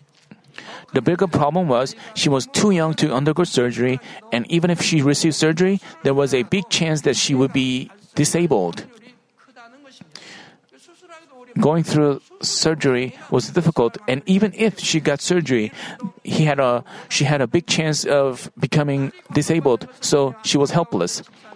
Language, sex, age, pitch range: Korean, male, 40-59, 140-195 Hz